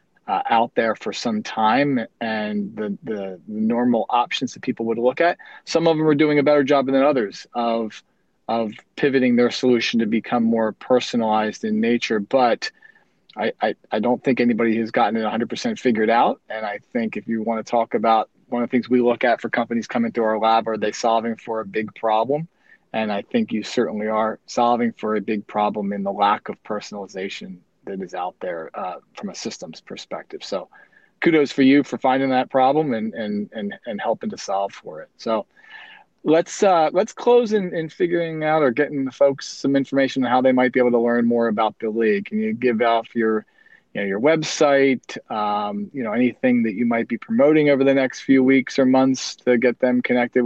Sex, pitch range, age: male, 115-155 Hz, 40-59